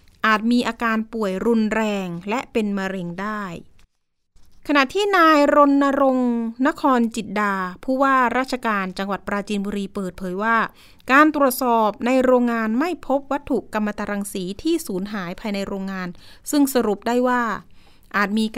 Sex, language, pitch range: female, Thai, 205-270 Hz